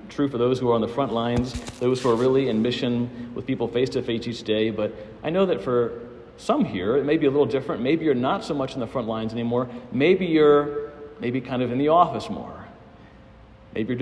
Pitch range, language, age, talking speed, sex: 110-140 Hz, English, 40-59, 240 wpm, male